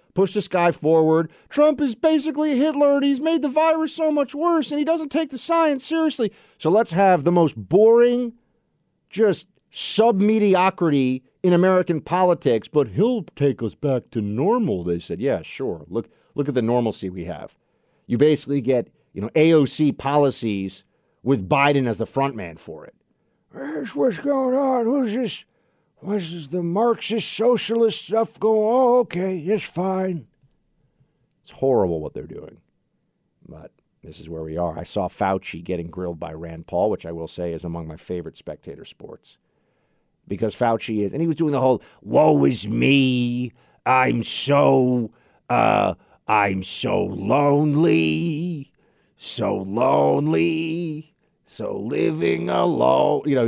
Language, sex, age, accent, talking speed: English, male, 50-69, American, 155 wpm